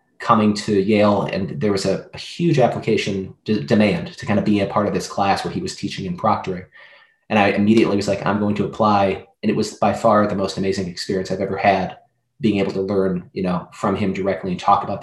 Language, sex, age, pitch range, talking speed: English, male, 30-49, 100-110 Hz, 235 wpm